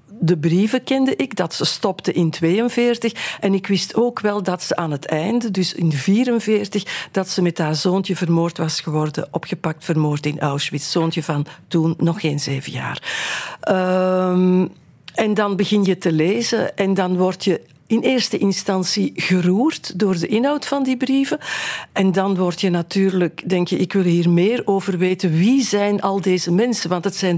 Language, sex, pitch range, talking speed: Dutch, female, 170-210 Hz, 180 wpm